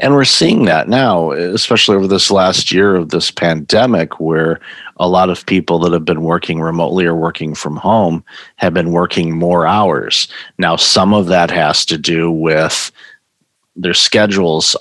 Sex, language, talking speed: male, English, 170 wpm